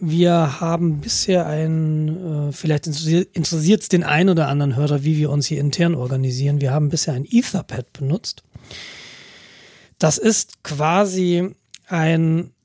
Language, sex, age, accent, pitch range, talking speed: German, male, 40-59, German, 145-175 Hz, 135 wpm